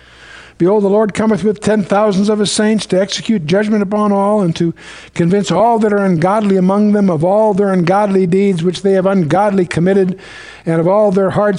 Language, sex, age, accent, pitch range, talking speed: English, male, 60-79, American, 145-205 Hz, 200 wpm